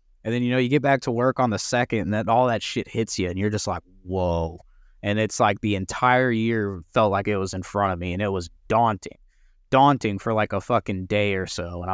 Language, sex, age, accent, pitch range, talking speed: English, male, 20-39, American, 95-125 Hz, 255 wpm